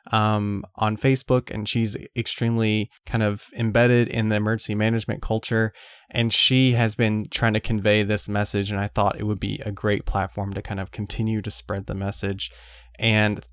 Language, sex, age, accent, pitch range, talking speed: English, male, 20-39, American, 100-115 Hz, 180 wpm